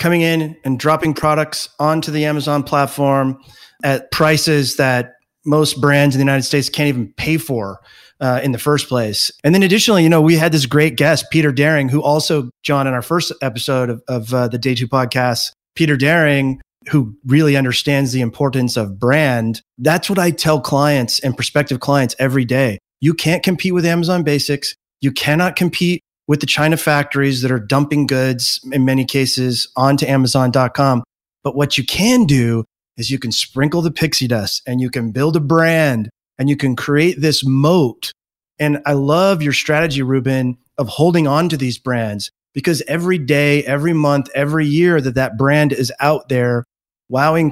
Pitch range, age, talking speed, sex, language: 130-155 Hz, 30-49, 180 wpm, male, English